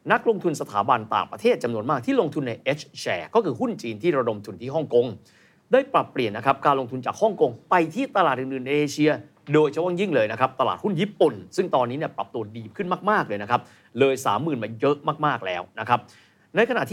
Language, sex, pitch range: Thai, male, 120-170 Hz